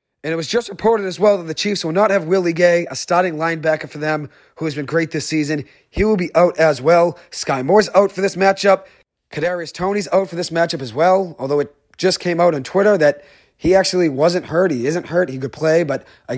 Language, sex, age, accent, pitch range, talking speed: English, male, 30-49, American, 150-180 Hz, 240 wpm